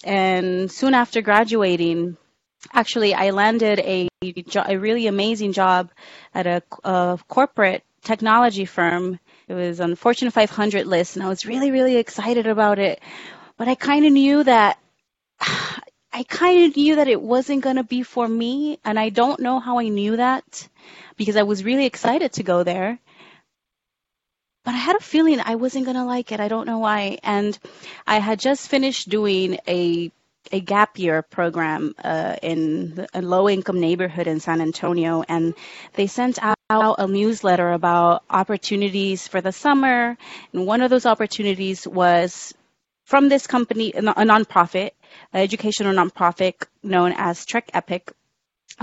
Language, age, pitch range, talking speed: English, 30-49, 185-240 Hz, 160 wpm